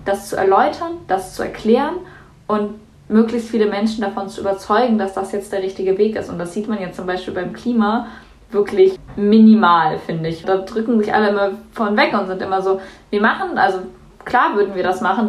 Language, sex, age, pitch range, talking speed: German, female, 20-39, 190-220 Hz, 205 wpm